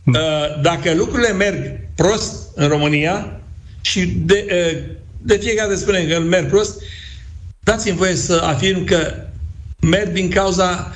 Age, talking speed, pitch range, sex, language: 60-79, 120 wpm, 140-175 Hz, male, Romanian